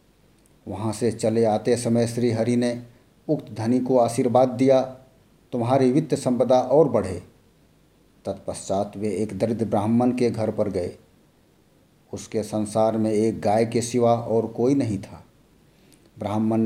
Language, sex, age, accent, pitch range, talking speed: Hindi, male, 50-69, native, 110-130 Hz, 140 wpm